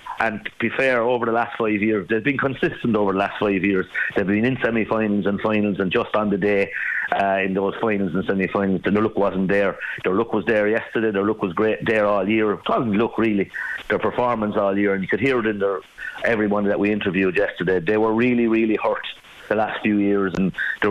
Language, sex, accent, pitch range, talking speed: English, male, British, 100-110 Hz, 240 wpm